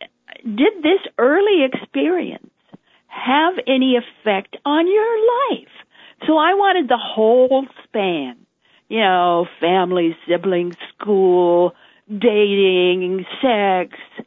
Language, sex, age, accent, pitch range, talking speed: English, female, 50-69, American, 185-255 Hz, 95 wpm